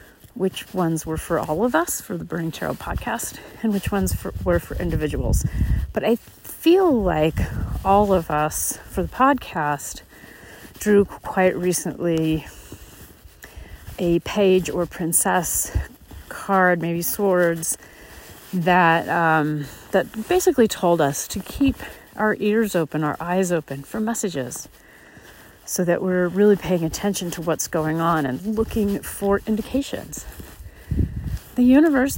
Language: English